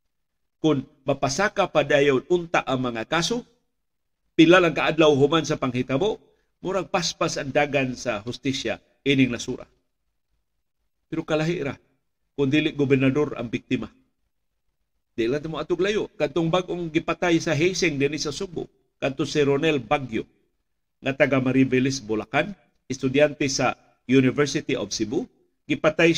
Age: 50-69